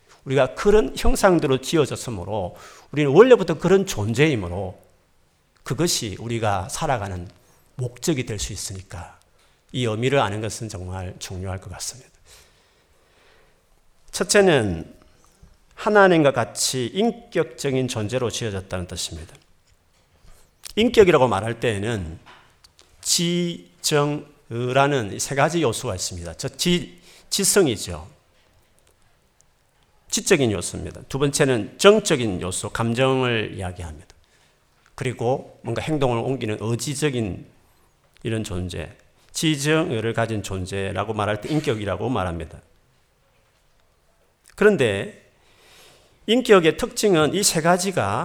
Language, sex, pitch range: Korean, male, 100-160 Hz